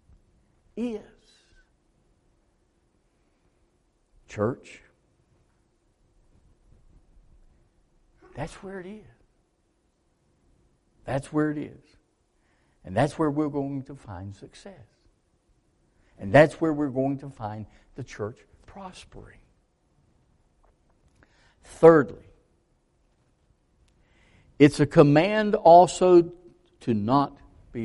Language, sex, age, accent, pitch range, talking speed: English, male, 60-79, American, 145-240 Hz, 80 wpm